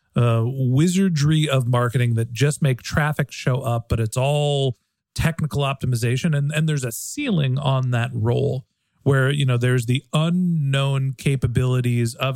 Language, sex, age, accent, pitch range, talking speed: English, male, 40-59, American, 130-165 Hz, 150 wpm